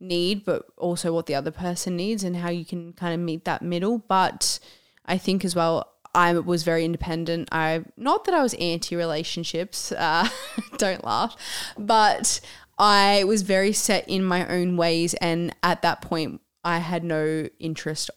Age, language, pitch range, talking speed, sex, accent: 20-39, English, 160-180 Hz, 170 wpm, female, Australian